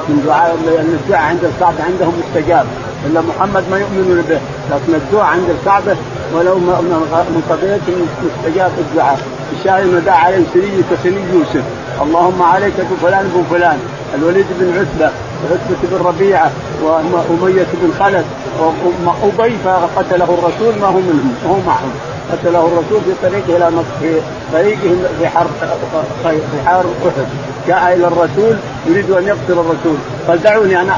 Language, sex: Arabic, male